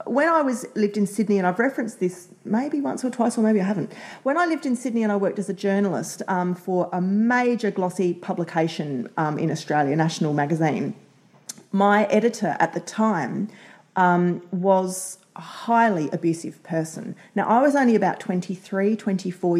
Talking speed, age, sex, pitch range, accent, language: 180 wpm, 30-49, female, 180-230 Hz, Australian, English